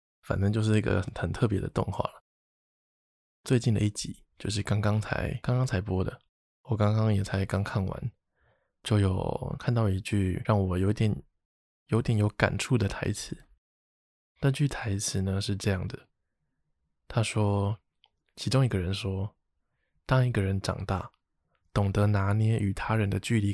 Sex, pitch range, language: male, 95-115 Hz, Chinese